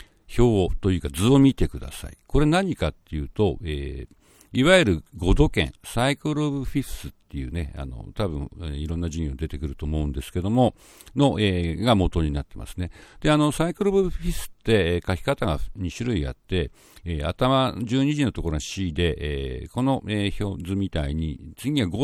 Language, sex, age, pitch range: Japanese, male, 50-69, 75-115 Hz